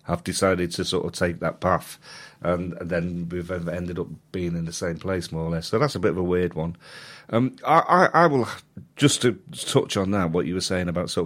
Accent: British